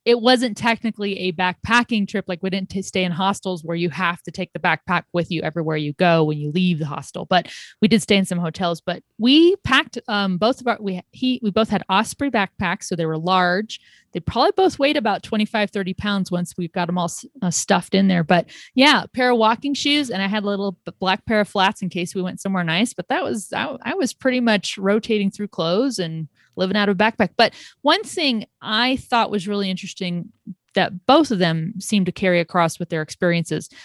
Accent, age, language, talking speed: American, 30-49, English, 225 wpm